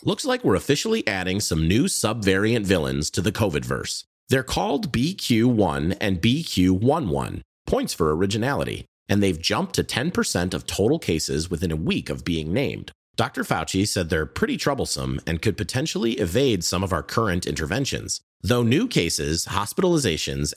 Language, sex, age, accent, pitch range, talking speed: English, male, 40-59, American, 80-110 Hz, 155 wpm